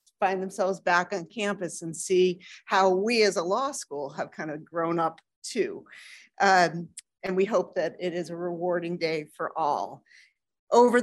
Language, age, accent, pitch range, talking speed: English, 40-59, American, 180-220 Hz, 175 wpm